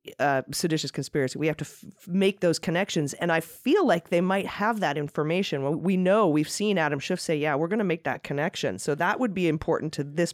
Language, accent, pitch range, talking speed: English, American, 145-195 Hz, 240 wpm